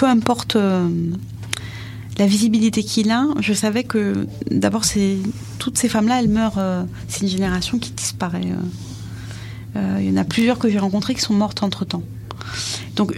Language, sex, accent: French, female, French